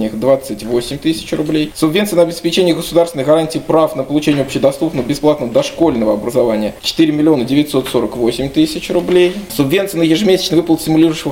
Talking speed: 125 wpm